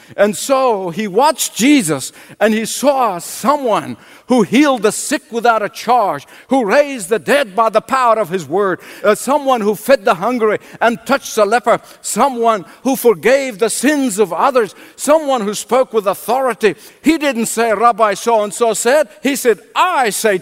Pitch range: 170-240 Hz